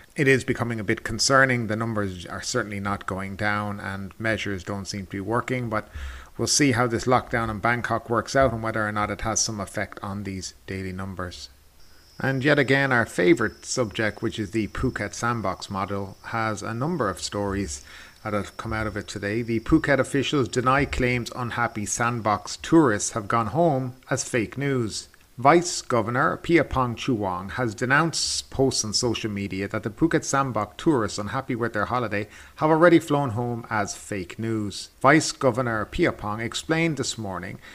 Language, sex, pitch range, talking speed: English, male, 100-135 Hz, 180 wpm